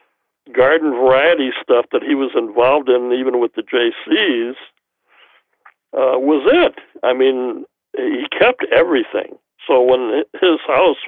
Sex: male